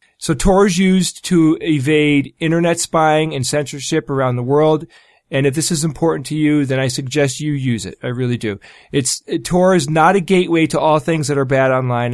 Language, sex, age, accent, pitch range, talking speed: English, male, 40-59, American, 130-160 Hz, 210 wpm